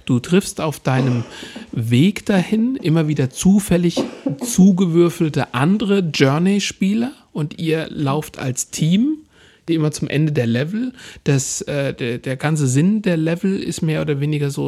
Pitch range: 140-180 Hz